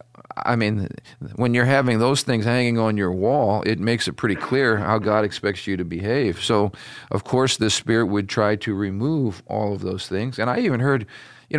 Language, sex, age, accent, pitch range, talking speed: English, male, 50-69, American, 110-135 Hz, 205 wpm